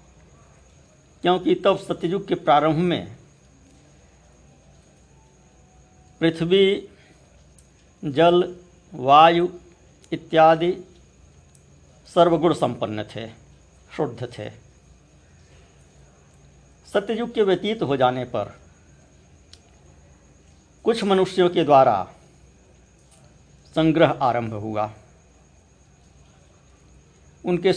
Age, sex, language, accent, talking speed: 60-79, male, Hindi, native, 65 wpm